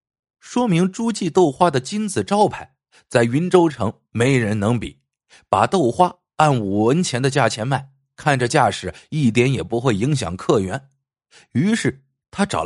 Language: Chinese